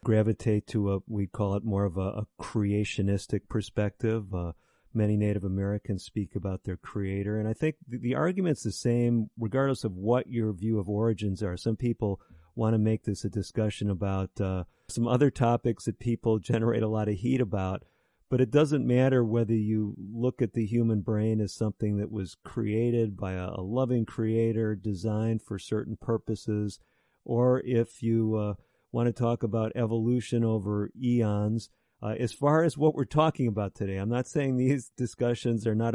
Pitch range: 105-125 Hz